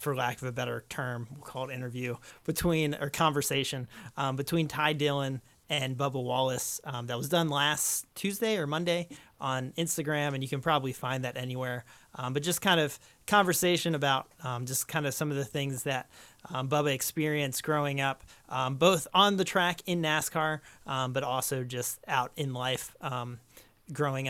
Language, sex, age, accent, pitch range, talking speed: English, male, 30-49, American, 130-155 Hz, 185 wpm